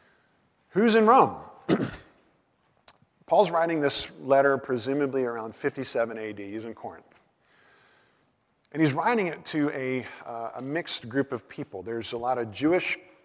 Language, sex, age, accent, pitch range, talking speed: English, male, 50-69, American, 120-155 Hz, 140 wpm